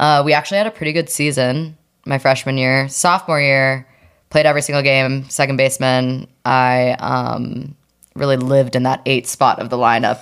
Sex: female